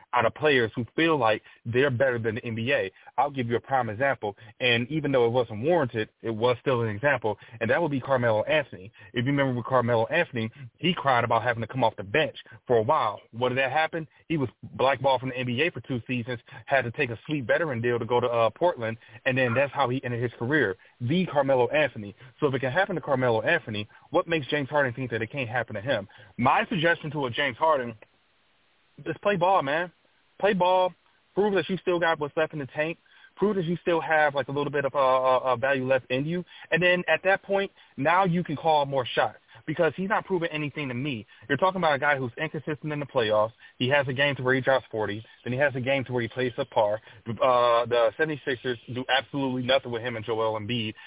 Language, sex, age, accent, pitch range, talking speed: English, male, 30-49, American, 120-155 Hz, 240 wpm